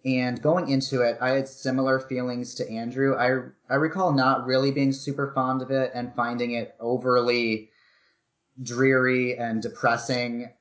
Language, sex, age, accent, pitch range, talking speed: English, male, 30-49, American, 115-135 Hz, 155 wpm